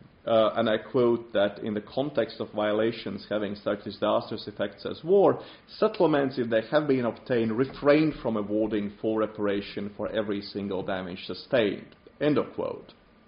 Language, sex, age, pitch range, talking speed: English, male, 30-49, 105-145 Hz, 160 wpm